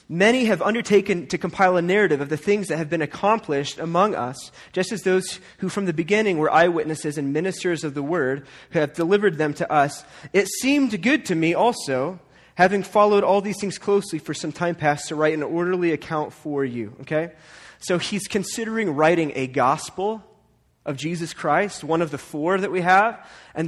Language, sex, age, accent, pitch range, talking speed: English, male, 30-49, American, 160-205 Hz, 195 wpm